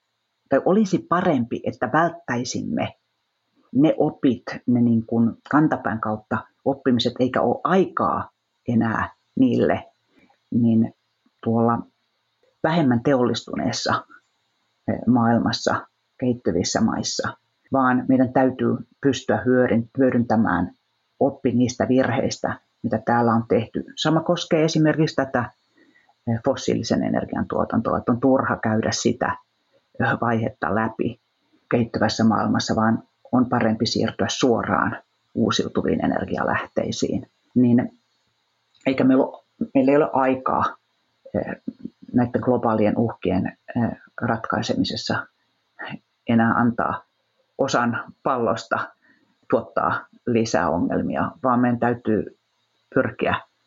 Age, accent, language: 40-59, native, Finnish